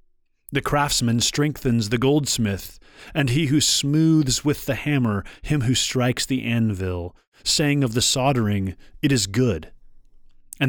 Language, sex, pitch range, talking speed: English, male, 100-140 Hz, 140 wpm